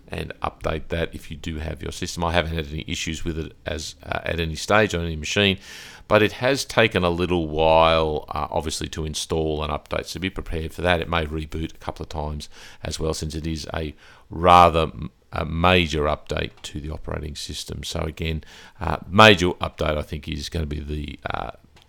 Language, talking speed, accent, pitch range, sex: English, 210 wpm, Australian, 80-90 Hz, male